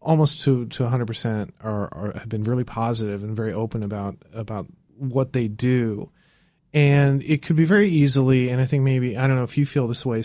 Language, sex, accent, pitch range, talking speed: English, male, American, 115-140 Hz, 210 wpm